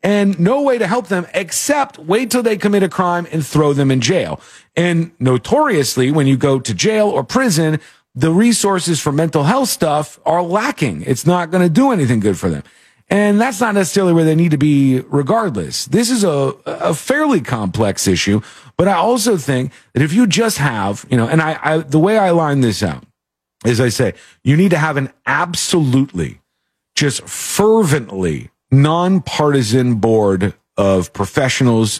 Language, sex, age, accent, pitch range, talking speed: English, male, 40-59, American, 120-180 Hz, 180 wpm